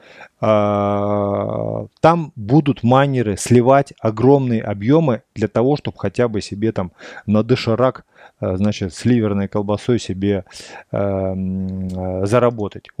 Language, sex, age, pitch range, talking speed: Russian, male, 20-39, 105-140 Hz, 95 wpm